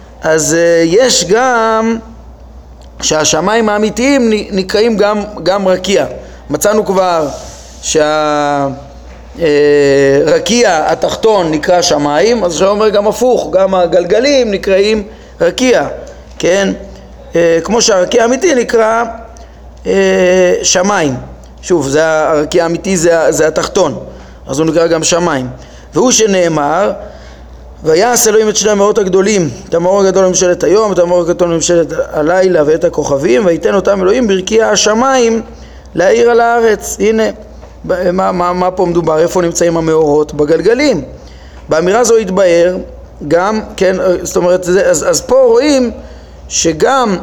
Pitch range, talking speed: 155-220 Hz, 120 wpm